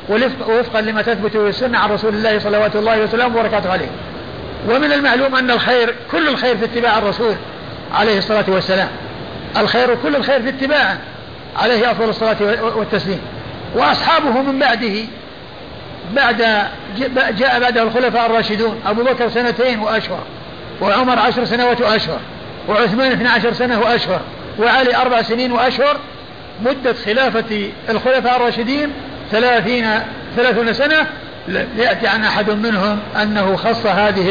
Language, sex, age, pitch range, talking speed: Arabic, male, 50-69, 210-245 Hz, 125 wpm